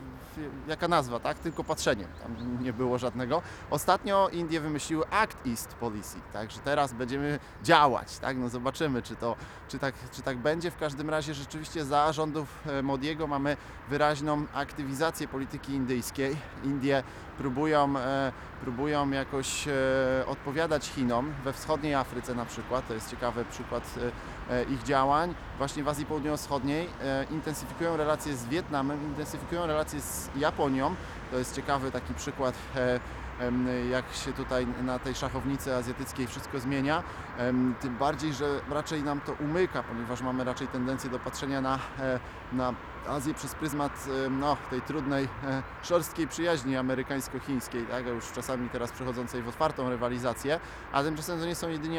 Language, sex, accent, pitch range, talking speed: Polish, male, native, 125-150 Hz, 145 wpm